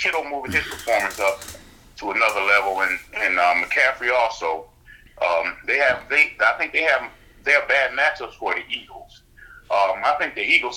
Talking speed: 185 wpm